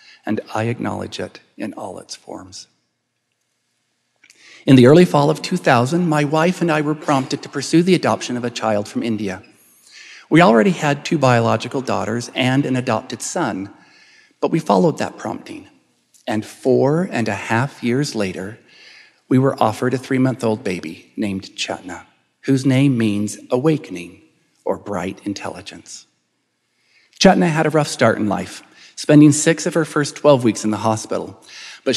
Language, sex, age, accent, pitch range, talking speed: English, male, 50-69, American, 110-150 Hz, 160 wpm